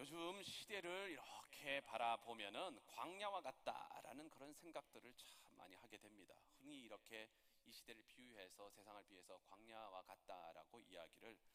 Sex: male